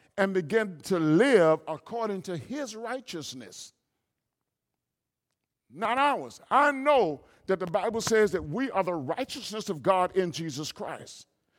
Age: 50-69